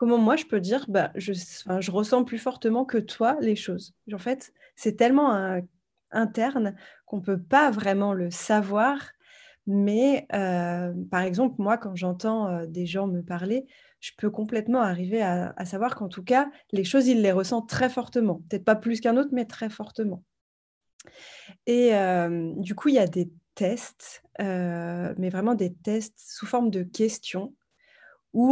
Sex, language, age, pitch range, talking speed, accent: female, French, 20-39, 185-230 Hz, 170 wpm, French